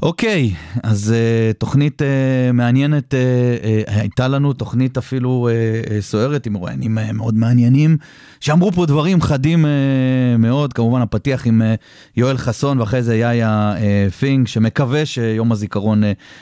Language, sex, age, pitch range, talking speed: Hebrew, male, 30-49, 105-130 Hz, 110 wpm